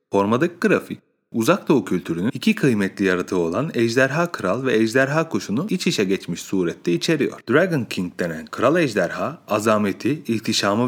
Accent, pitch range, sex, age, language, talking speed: native, 100-150 Hz, male, 30-49, Turkish, 140 wpm